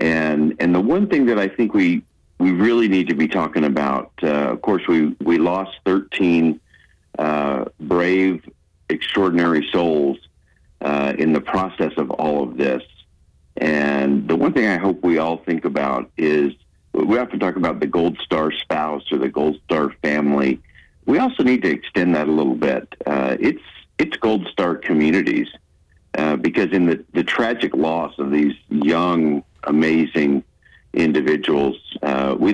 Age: 50-69